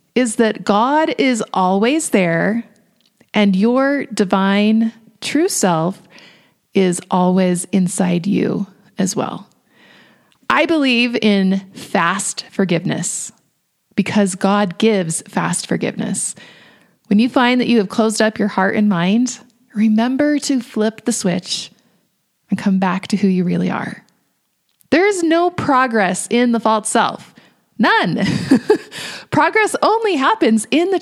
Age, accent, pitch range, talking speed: 30-49, American, 195-255 Hz, 130 wpm